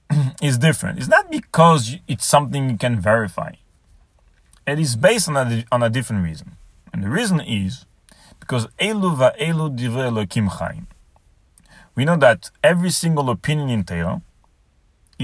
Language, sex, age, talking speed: English, male, 40-59, 140 wpm